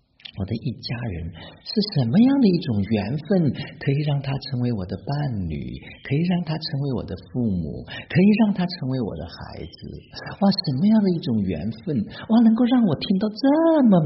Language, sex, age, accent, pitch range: Chinese, male, 50-69, native, 95-155 Hz